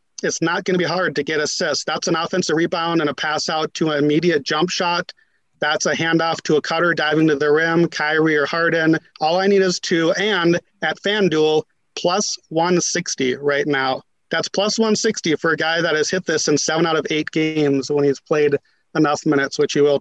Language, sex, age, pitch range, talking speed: English, male, 30-49, 150-175 Hz, 215 wpm